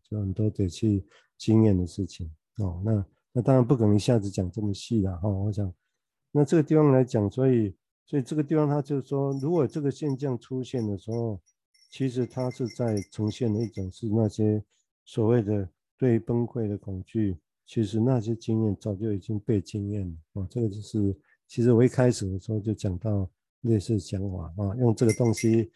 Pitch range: 105-125 Hz